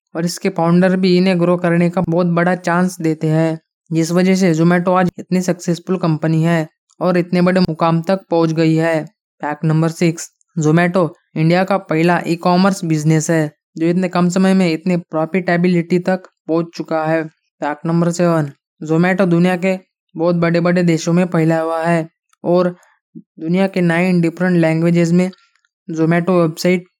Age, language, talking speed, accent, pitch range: 20-39, Hindi, 165 wpm, native, 160-180 Hz